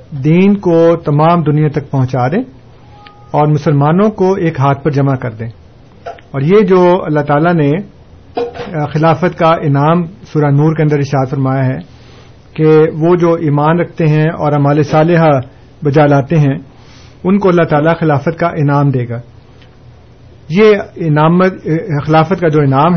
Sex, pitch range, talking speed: male, 135-170 Hz, 155 wpm